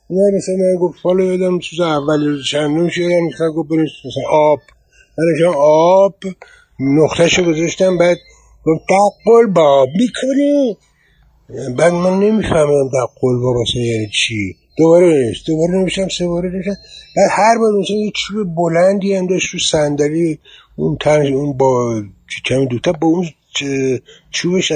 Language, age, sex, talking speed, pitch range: Persian, 60-79, male, 65 wpm, 135-185 Hz